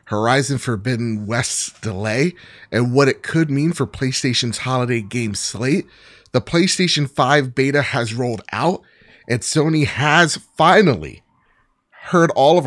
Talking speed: 135 wpm